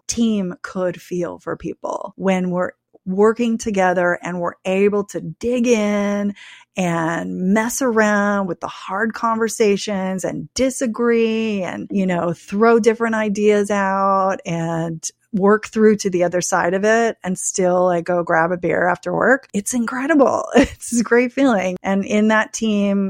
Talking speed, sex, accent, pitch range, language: 155 wpm, female, American, 180-225 Hz, English